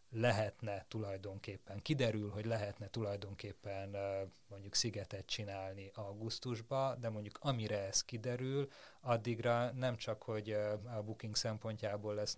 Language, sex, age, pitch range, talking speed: Hungarian, male, 30-49, 100-115 Hz, 110 wpm